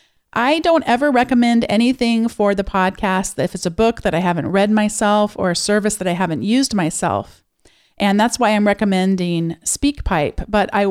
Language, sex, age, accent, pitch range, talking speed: English, female, 40-59, American, 185-230 Hz, 180 wpm